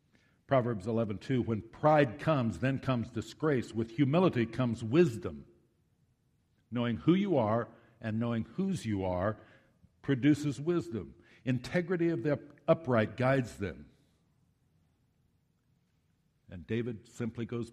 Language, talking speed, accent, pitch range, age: English, 115 wpm, American, 110-150 Hz, 60-79